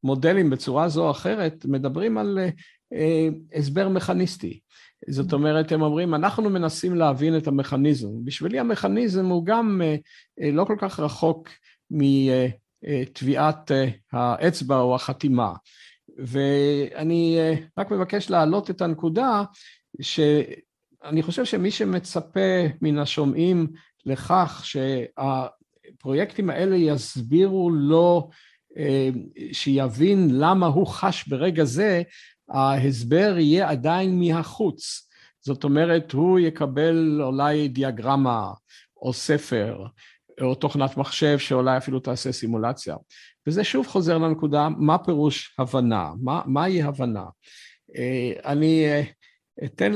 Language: Hebrew